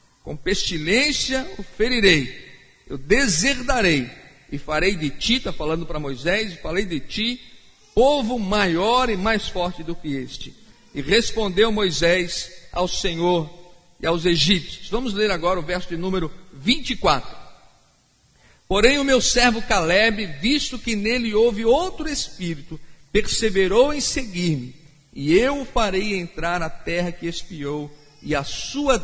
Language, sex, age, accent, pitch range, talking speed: Portuguese, male, 50-69, Brazilian, 165-225 Hz, 140 wpm